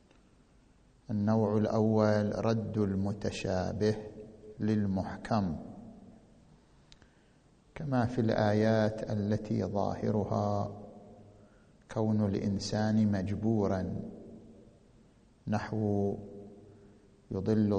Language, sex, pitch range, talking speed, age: Arabic, male, 105-115 Hz, 50 wpm, 50-69